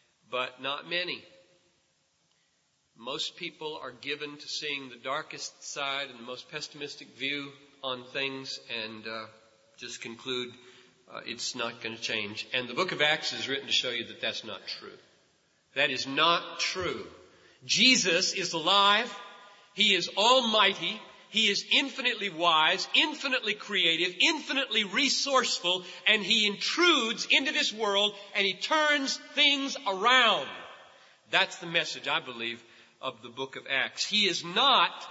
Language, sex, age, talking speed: English, male, 40-59, 145 wpm